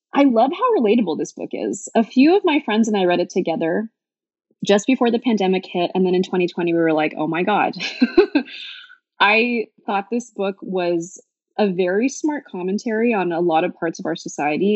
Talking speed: 200 wpm